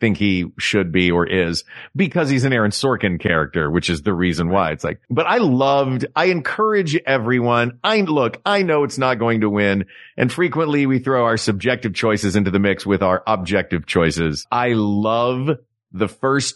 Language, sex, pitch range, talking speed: English, male, 100-145 Hz, 190 wpm